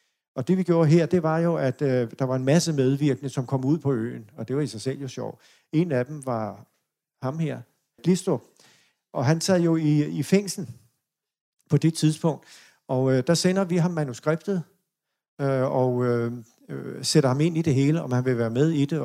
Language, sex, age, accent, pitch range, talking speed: Danish, male, 50-69, native, 130-155 Hz, 215 wpm